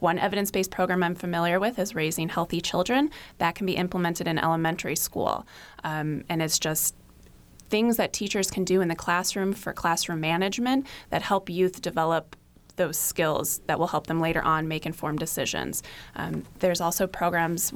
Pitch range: 160-185 Hz